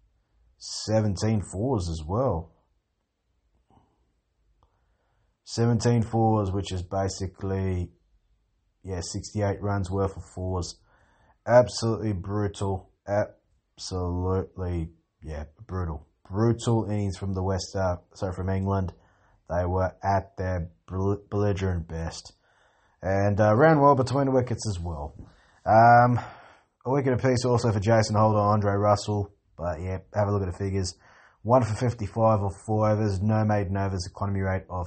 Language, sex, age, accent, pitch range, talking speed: English, male, 20-39, Australian, 90-105 Hz, 130 wpm